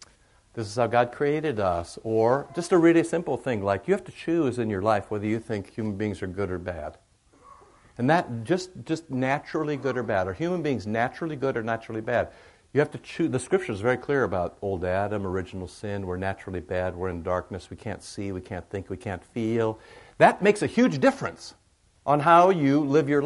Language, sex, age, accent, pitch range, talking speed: English, male, 60-79, American, 100-140 Hz, 215 wpm